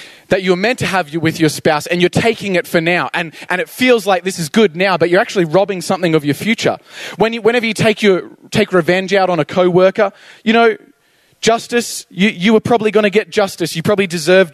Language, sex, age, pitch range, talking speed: English, male, 20-39, 160-200 Hz, 235 wpm